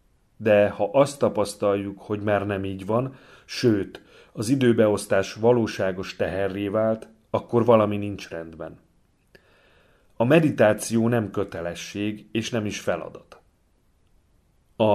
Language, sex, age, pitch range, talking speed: Hungarian, male, 40-59, 95-115 Hz, 110 wpm